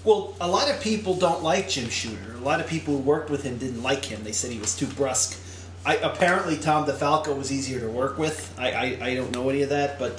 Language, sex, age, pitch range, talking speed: English, male, 30-49, 105-160 Hz, 260 wpm